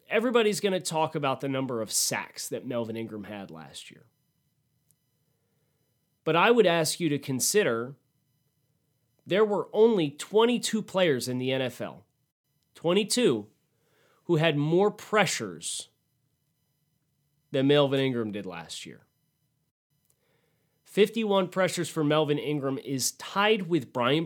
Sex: male